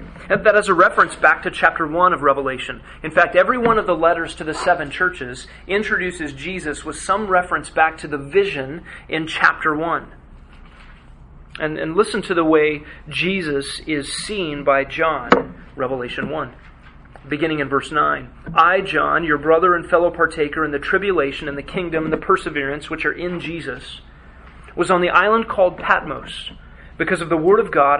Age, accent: 30-49, American